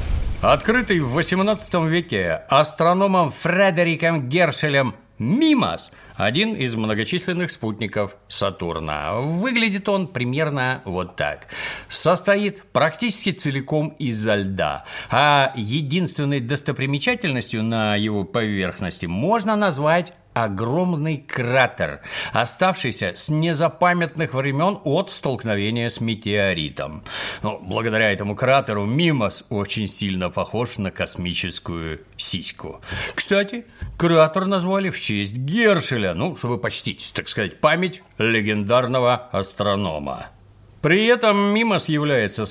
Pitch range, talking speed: 110-175 Hz, 100 wpm